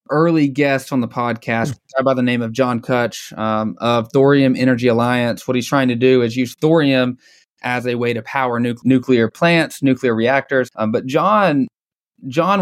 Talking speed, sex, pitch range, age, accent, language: 175 wpm, male, 125-145 Hz, 20-39, American, English